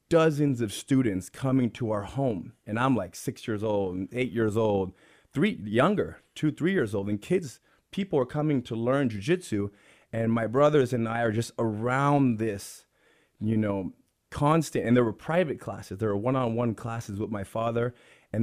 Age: 30-49